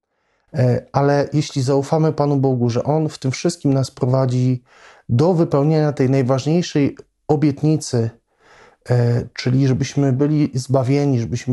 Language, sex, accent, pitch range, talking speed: Polish, male, native, 120-145 Hz, 115 wpm